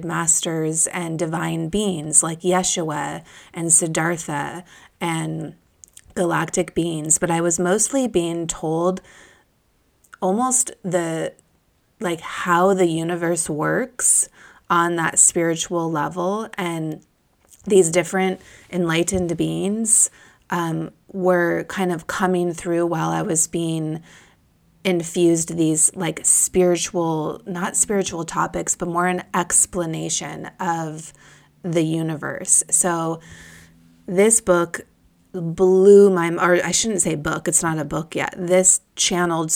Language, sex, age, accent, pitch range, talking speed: English, female, 20-39, American, 160-180 Hz, 110 wpm